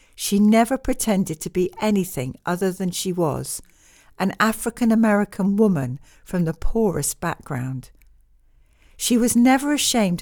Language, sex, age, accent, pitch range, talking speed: English, female, 60-79, British, 160-235 Hz, 125 wpm